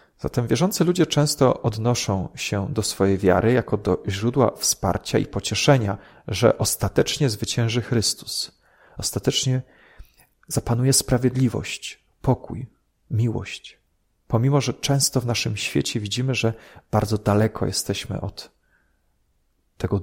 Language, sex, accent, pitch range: Polish, male, native, 100-125 Hz